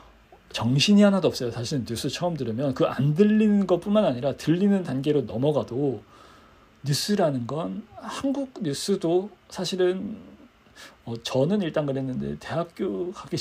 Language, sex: Korean, male